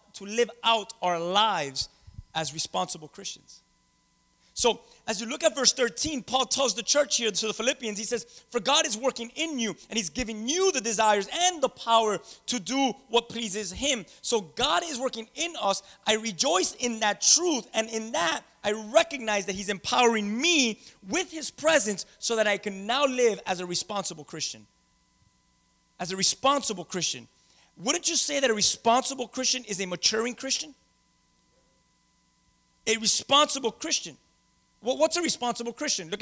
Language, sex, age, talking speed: English, male, 30-49, 170 wpm